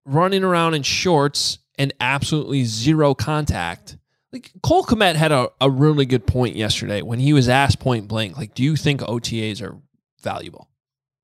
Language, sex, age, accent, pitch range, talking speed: English, male, 20-39, American, 115-150 Hz, 165 wpm